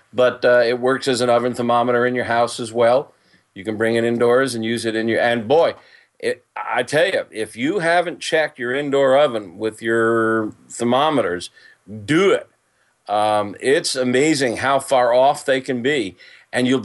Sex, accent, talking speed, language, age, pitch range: male, American, 180 wpm, English, 40-59, 120-160 Hz